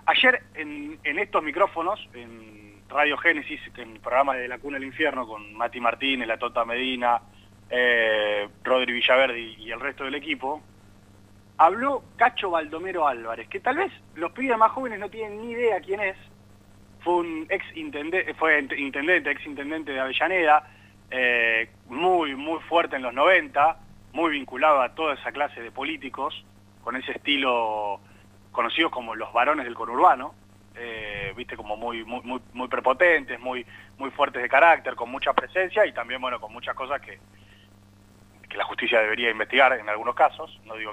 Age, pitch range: 30-49, 105-155 Hz